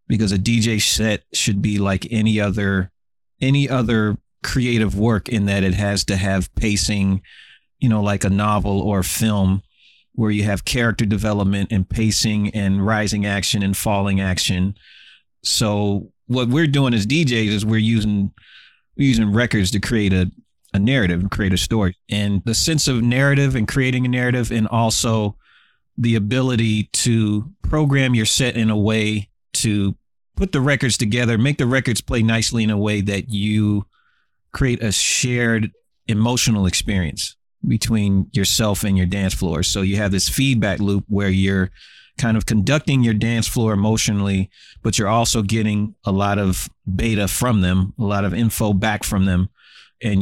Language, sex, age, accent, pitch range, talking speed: English, male, 30-49, American, 100-115 Hz, 170 wpm